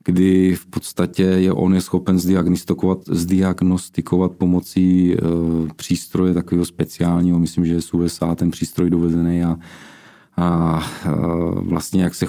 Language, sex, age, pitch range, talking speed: Czech, male, 40-59, 85-90 Hz, 125 wpm